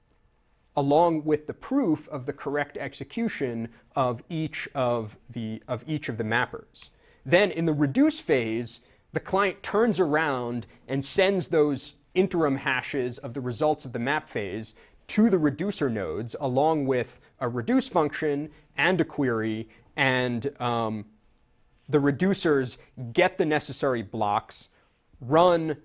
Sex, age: male, 30-49